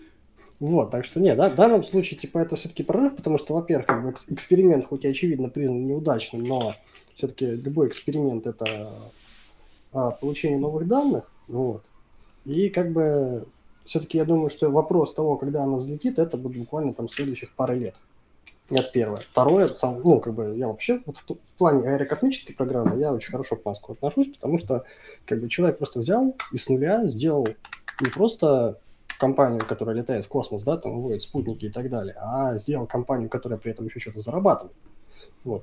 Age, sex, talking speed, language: 20-39, male, 180 wpm, Russian